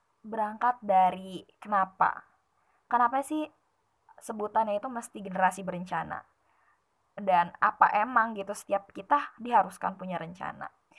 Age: 20-39